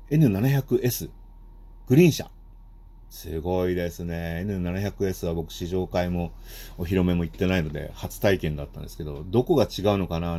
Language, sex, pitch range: Japanese, male, 85-120 Hz